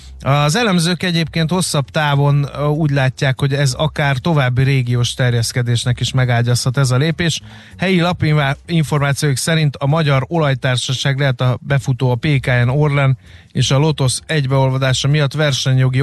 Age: 30-49